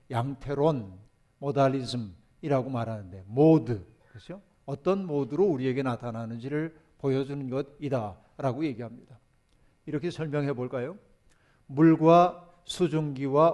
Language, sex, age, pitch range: Korean, male, 50-69, 125-160 Hz